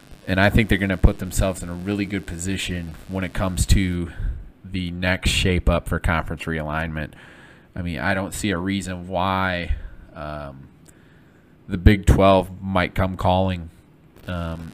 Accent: American